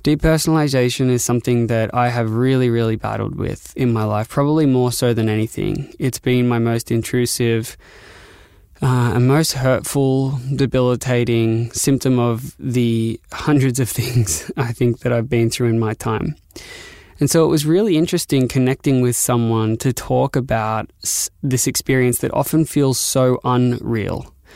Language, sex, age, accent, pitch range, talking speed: English, male, 20-39, Australian, 115-135 Hz, 150 wpm